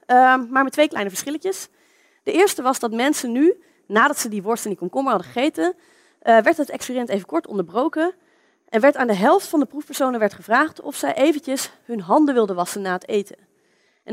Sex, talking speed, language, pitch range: female, 205 wpm, Dutch, 210-310 Hz